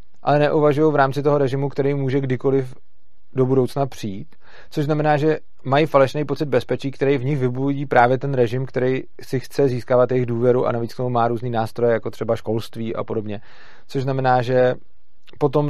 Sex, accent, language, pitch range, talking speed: male, native, Czech, 120-135 Hz, 185 wpm